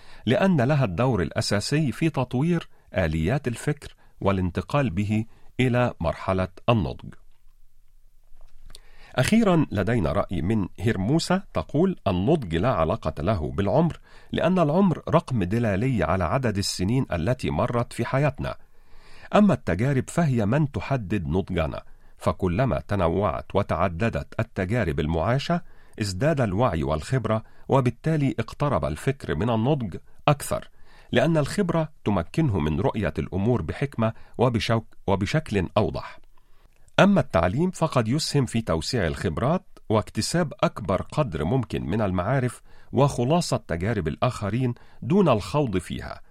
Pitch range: 100-140 Hz